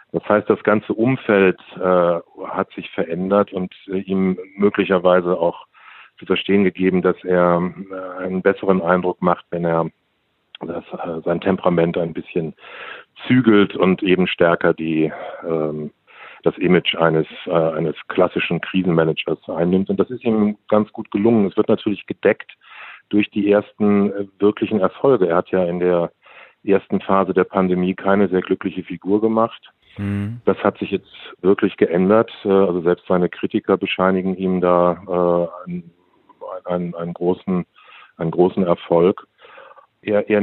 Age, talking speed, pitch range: 50-69, 145 wpm, 90-100 Hz